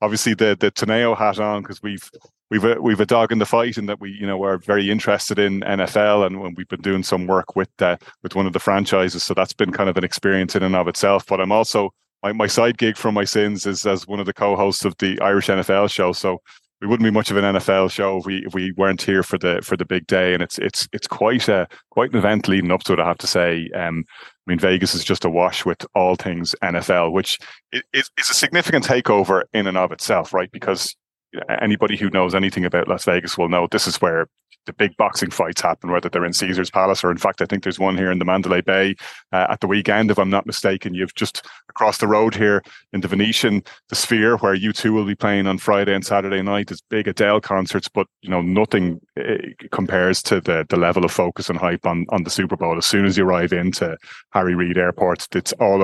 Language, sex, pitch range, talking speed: English, male, 90-105 Hz, 250 wpm